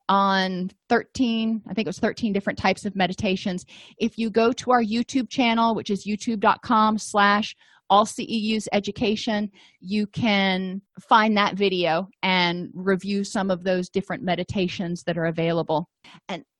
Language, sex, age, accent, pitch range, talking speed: English, female, 30-49, American, 185-230 Hz, 150 wpm